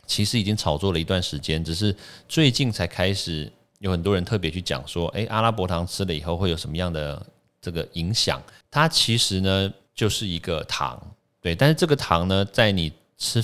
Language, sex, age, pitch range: Chinese, male, 30-49, 85-110 Hz